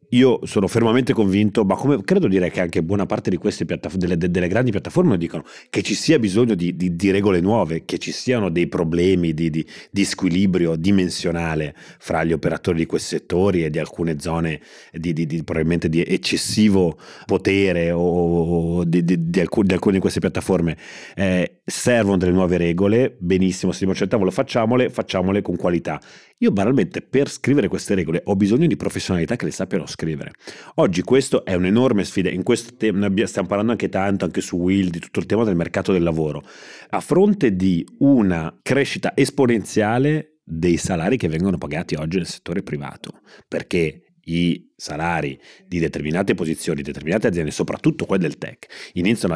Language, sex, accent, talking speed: Italian, male, native, 180 wpm